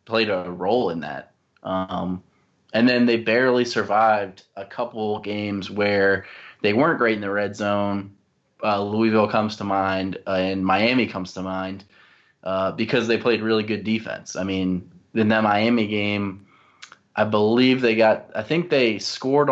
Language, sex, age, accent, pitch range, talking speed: English, male, 20-39, American, 95-115 Hz, 165 wpm